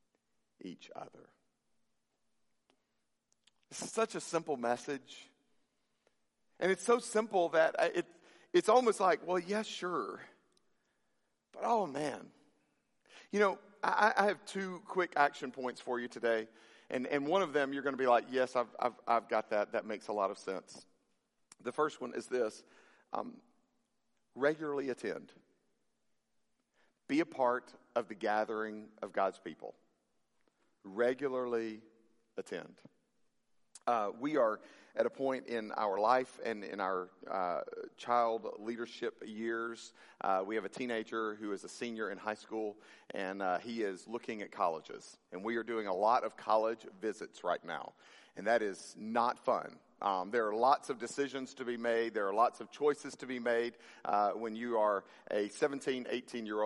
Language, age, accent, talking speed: English, 50-69, American, 160 wpm